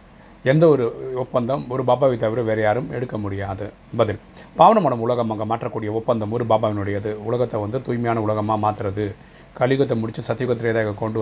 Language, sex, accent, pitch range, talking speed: Tamil, male, native, 105-125 Hz, 145 wpm